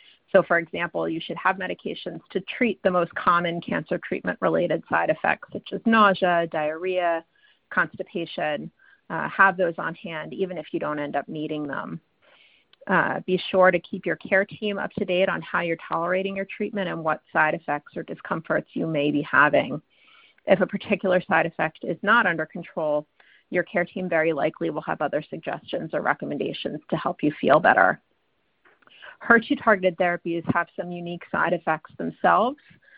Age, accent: 30-49, American